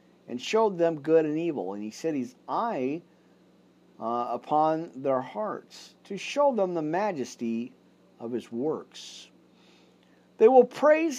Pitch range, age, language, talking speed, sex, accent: 125-195 Hz, 50-69, English, 140 wpm, male, American